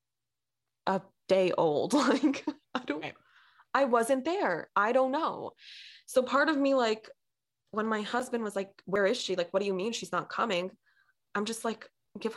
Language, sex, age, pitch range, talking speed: English, female, 20-39, 190-240 Hz, 180 wpm